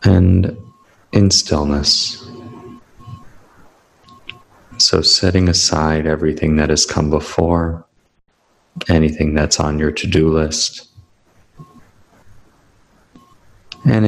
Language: English